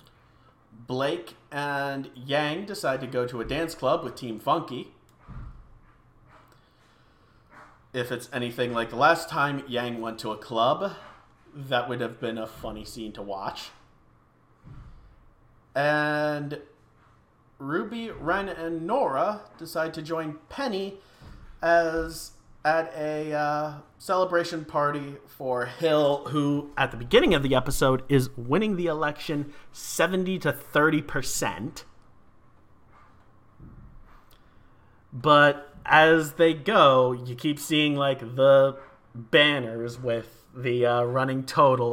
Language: English